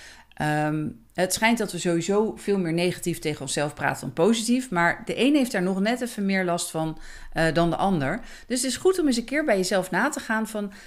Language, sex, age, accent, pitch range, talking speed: Dutch, female, 40-59, Dutch, 180-255 Hz, 230 wpm